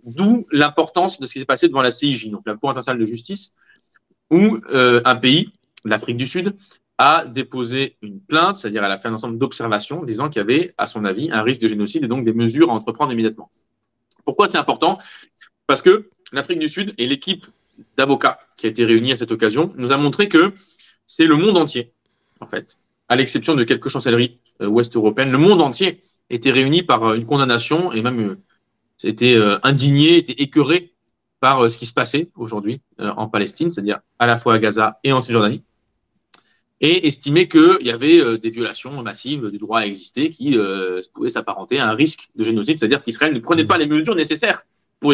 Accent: French